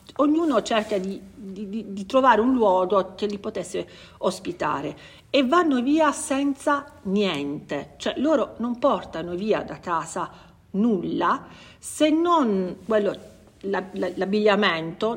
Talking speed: 110 wpm